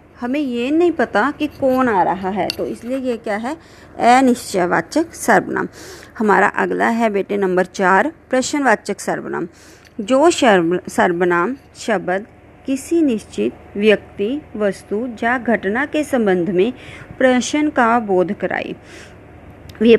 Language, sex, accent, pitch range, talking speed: Hindi, female, native, 195-275 Hz, 125 wpm